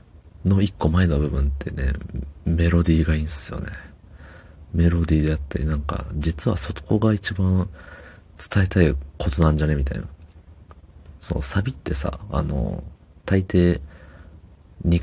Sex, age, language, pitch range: male, 40-59, Japanese, 75-90 Hz